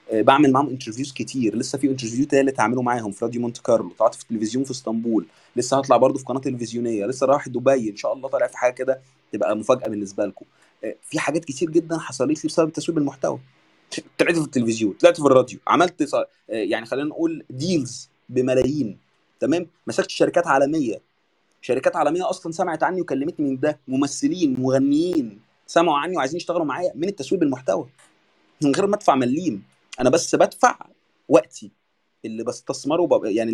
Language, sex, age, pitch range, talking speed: Arabic, male, 20-39, 120-165 Hz, 165 wpm